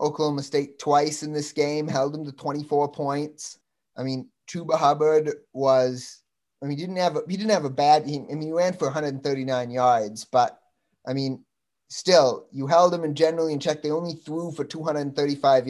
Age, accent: 20-39, American